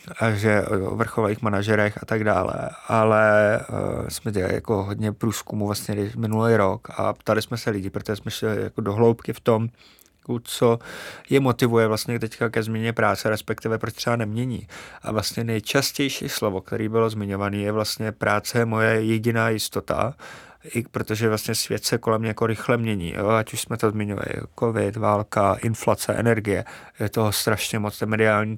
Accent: native